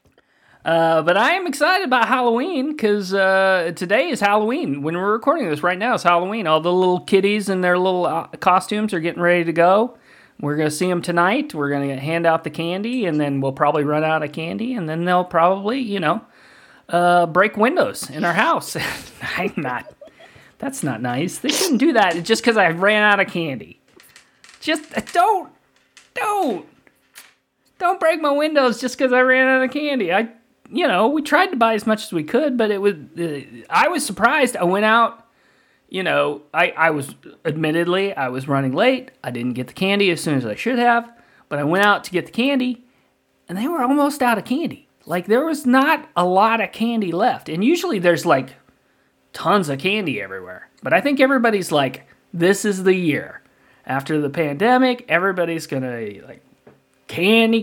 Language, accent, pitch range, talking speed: English, American, 165-245 Hz, 195 wpm